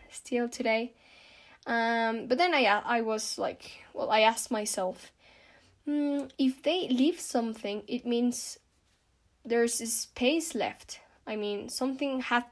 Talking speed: 135 wpm